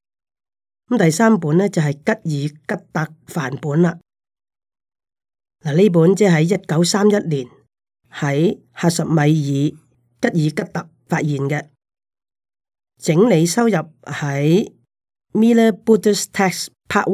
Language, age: Chinese, 30-49